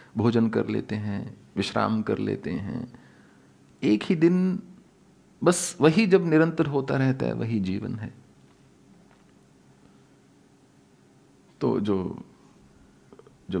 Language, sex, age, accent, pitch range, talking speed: English, male, 40-59, Indian, 105-140 Hz, 105 wpm